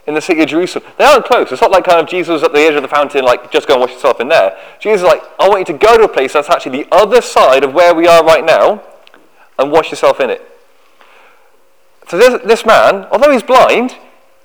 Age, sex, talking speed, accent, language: 30-49, male, 260 wpm, British, English